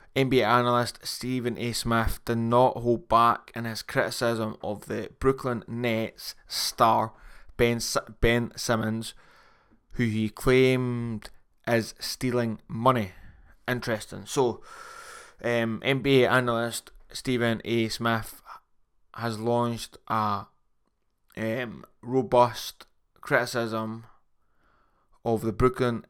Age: 20-39